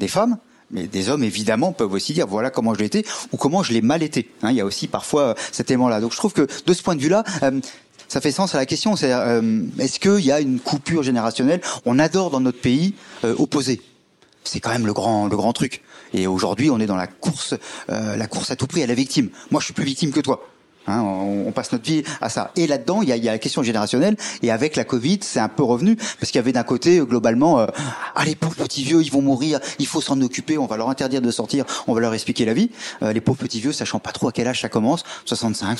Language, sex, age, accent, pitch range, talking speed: French, male, 40-59, French, 115-165 Hz, 260 wpm